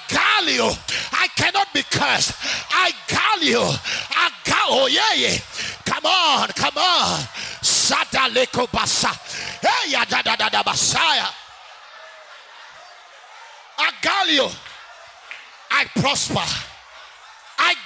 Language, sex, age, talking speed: English, male, 30-49, 75 wpm